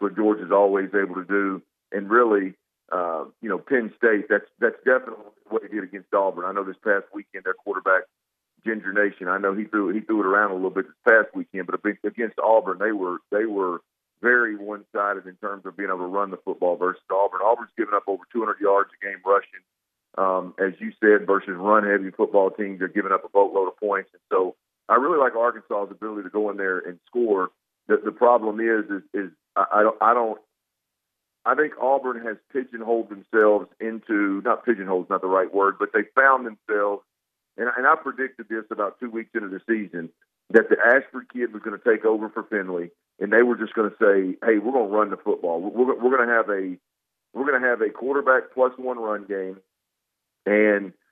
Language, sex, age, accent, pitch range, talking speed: English, male, 40-59, American, 100-115 Hz, 220 wpm